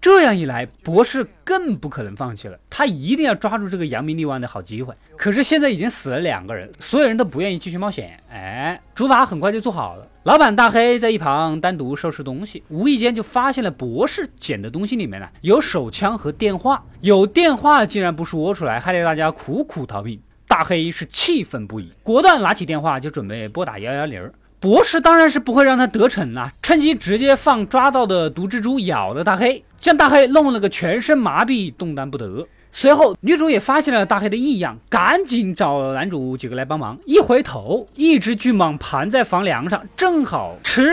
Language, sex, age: Chinese, male, 20-39